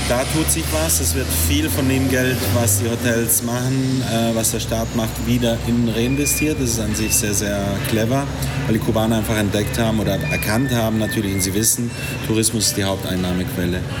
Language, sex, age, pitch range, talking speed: German, male, 30-49, 105-120 Hz, 195 wpm